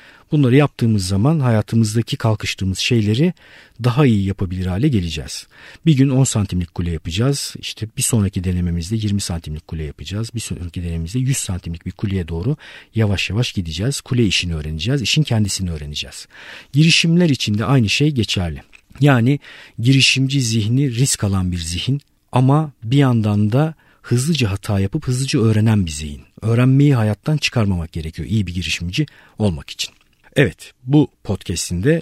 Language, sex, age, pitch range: Turkish, male, 50-69, 95-130 Hz